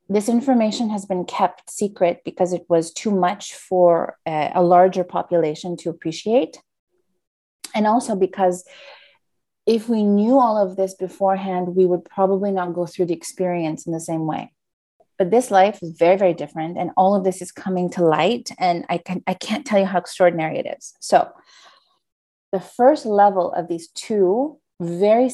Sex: female